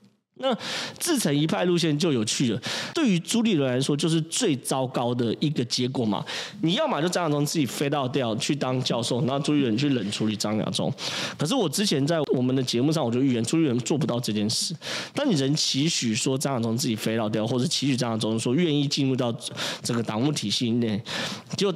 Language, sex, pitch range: Chinese, male, 115-165 Hz